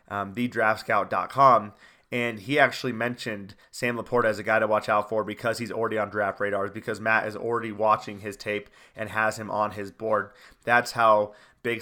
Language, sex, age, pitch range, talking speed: English, male, 30-49, 110-130 Hz, 190 wpm